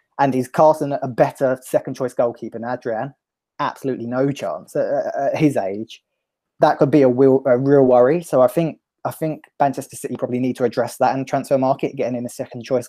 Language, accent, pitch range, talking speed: English, British, 120-145 Hz, 210 wpm